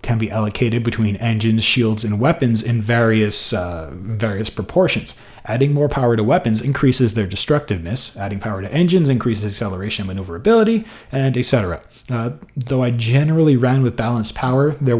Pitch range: 105-130 Hz